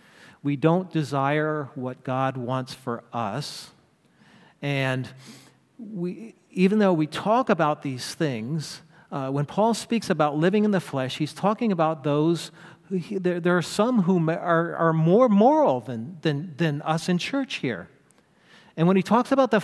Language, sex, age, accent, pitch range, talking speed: English, male, 40-59, American, 155-210 Hz, 165 wpm